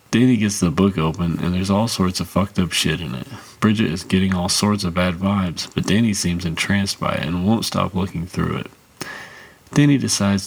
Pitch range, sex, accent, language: 85-105 Hz, male, American, English